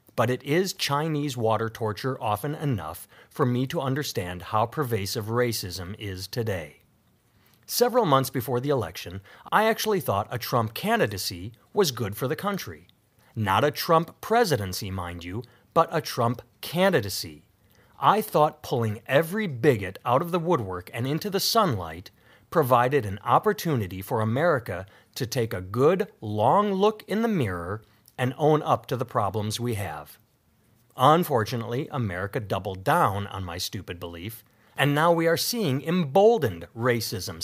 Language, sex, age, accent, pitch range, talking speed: English, male, 30-49, American, 105-150 Hz, 150 wpm